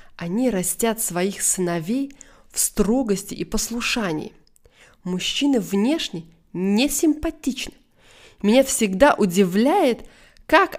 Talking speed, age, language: 90 wpm, 20-39, Russian